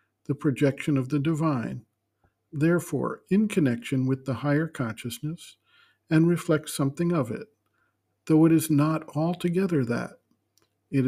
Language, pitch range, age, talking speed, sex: English, 130-160 Hz, 60-79, 130 wpm, male